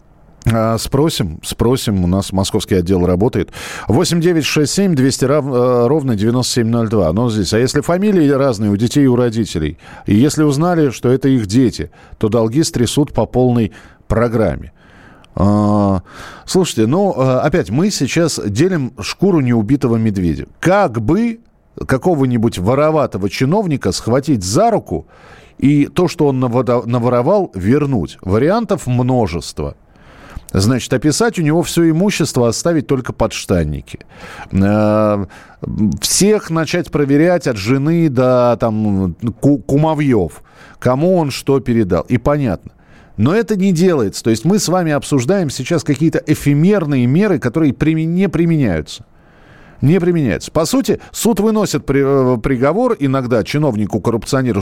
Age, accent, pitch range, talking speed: 40-59, native, 110-160 Hz, 120 wpm